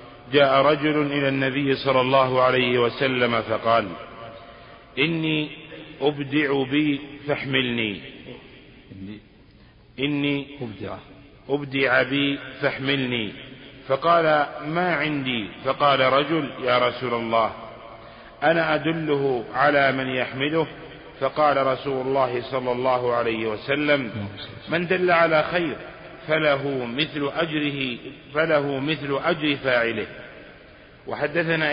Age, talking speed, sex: 50-69, 95 wpm, male